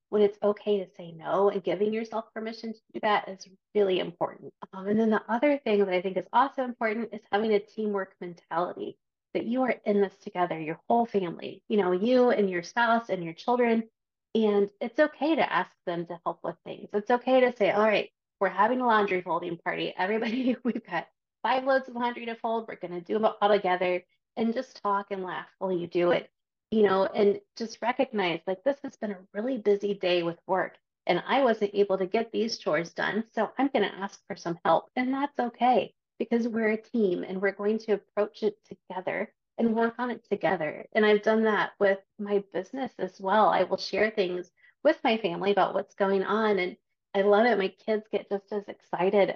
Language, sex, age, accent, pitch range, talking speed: English, female, 30-49, American, 190-225 Hz, 220 wpm